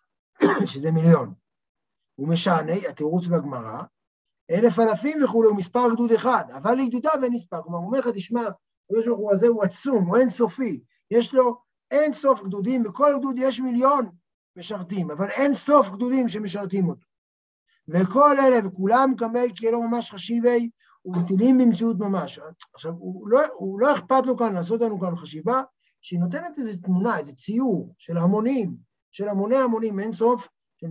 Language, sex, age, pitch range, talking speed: Hebrew, male, 50-69, 180-240 Hz, 150 wpm